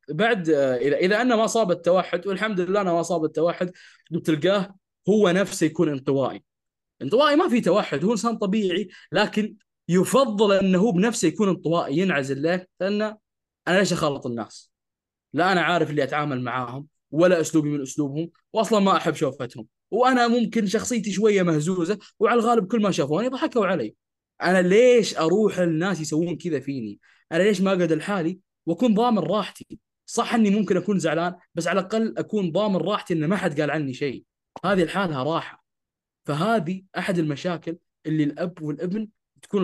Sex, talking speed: male, 160 wpm